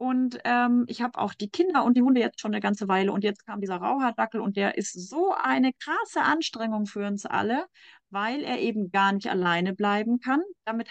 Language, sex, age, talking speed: German, female, 30-49, 215 wpm